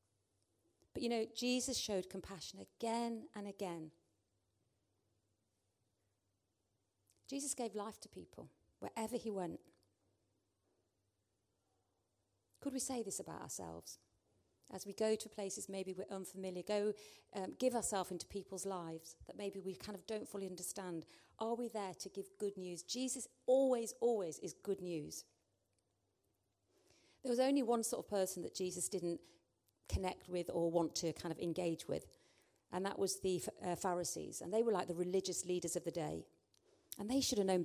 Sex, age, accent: female, 40-59, British